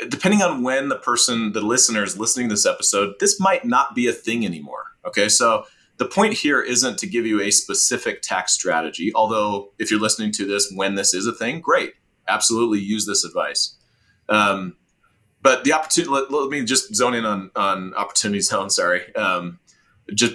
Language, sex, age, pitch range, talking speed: English, male, 30-49, 105-130 Hz, 190 wpm